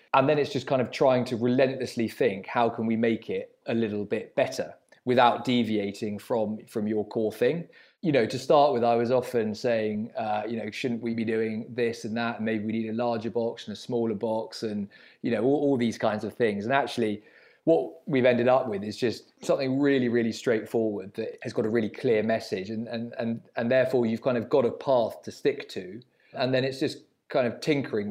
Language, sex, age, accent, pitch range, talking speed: English, male, 20-39, British, 110-120 Hz, 220 wpm